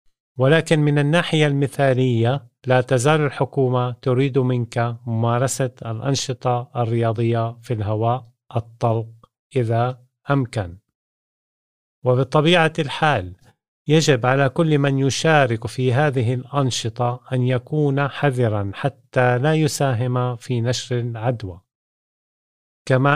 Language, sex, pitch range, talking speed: Arabic, male, 120-145 Hz, 95 wpm